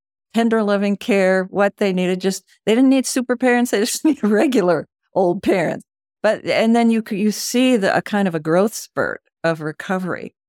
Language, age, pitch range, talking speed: English, 50-69, 180-220 Hz, 190 wpm